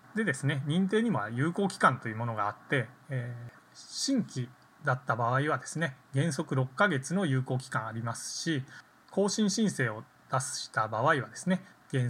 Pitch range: 125-165 Hz